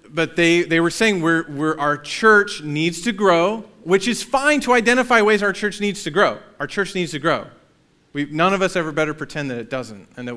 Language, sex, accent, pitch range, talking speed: English, male, American, 140-180 Hz, 230 wpm